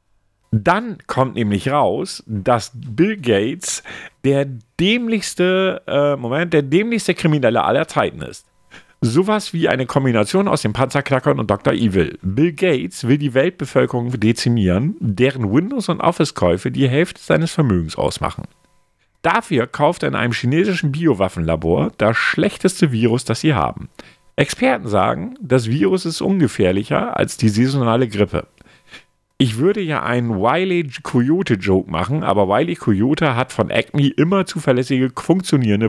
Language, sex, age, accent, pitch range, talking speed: German, male, 50-69, German, 105-165 Hz, 135 wpm